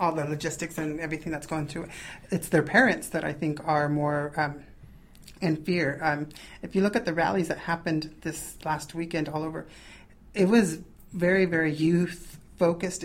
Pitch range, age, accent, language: 150-170 Hz, 30-49, American, English